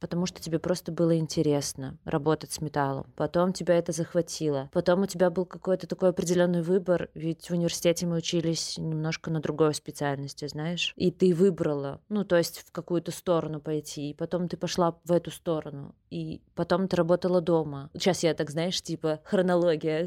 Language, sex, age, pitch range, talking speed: Russian, female, 20-39, 165-195 Hz, 175 wpm